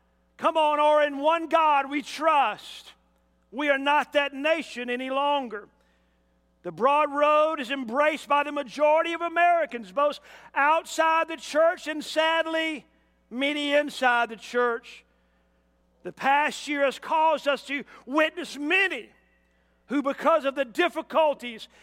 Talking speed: 135 wpm